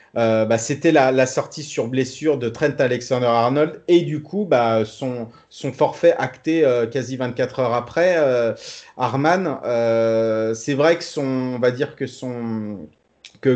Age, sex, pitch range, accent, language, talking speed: 30-49, male, 115-145 Hz, French, French, 165 wpm